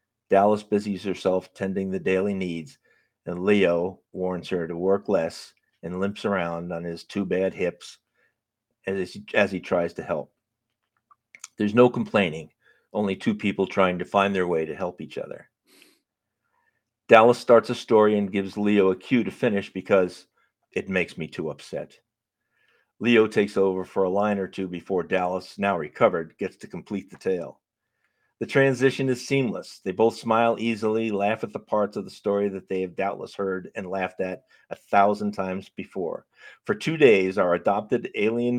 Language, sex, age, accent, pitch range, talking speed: English, male, 50-69, American, 95-110 Hz, 170 wpm